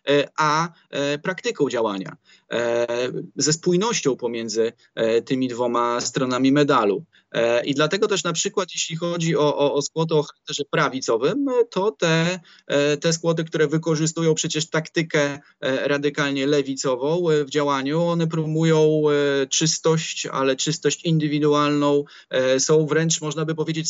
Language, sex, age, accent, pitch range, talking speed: Polish, male, 20-39, native, 135-160 Hz, 115 wpm